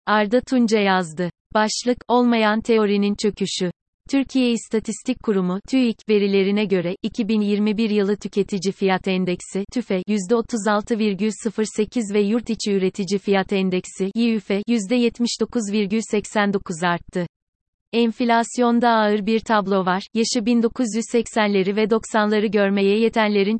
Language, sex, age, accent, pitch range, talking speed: Turkish, female, 30-49, native, 195-230 Hz, 100 wpm